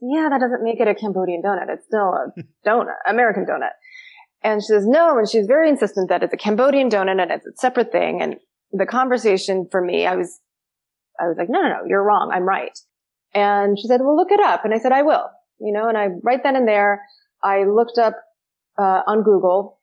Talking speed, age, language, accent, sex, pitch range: 225 wpm, 30-49, English, American, female, 190-235 Hz